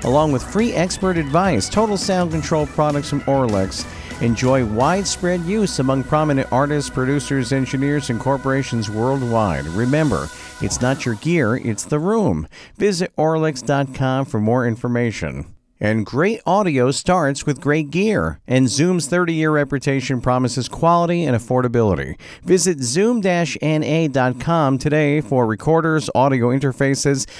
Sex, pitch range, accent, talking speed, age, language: male, 125-175 Hz, American, 125 wpm, 50-69, English